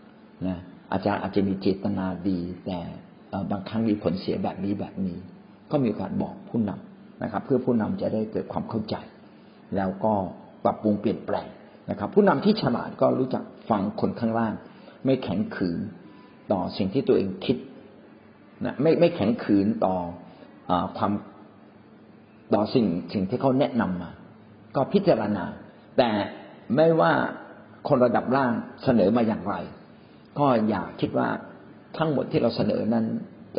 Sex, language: male, Thai